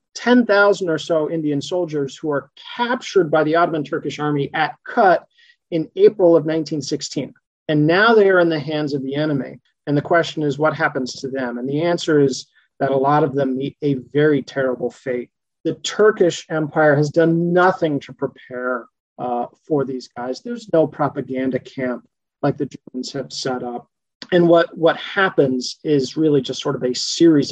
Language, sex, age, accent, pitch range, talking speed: English, male, 40-59, American, 140-165 Hz, 185 wpm